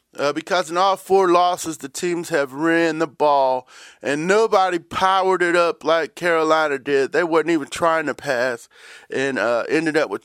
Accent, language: American, English